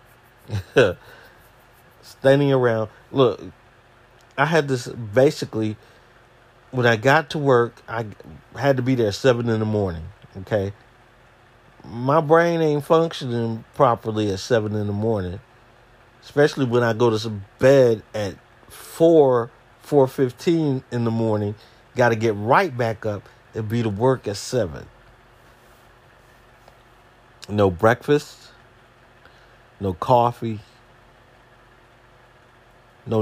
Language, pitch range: English, 110-135 Hz